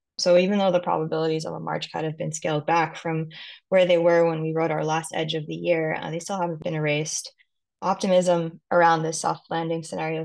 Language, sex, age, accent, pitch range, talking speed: English, female, 20-39, American, 160-175 Hz, 220 wpm